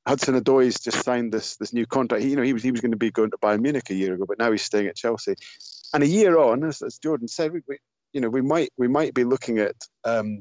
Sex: male